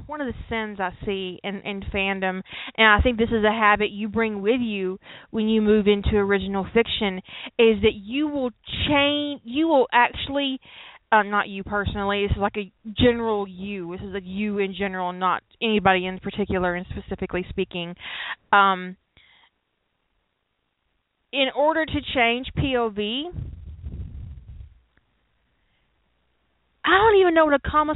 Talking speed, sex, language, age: 150 wpm, female, English, 30-49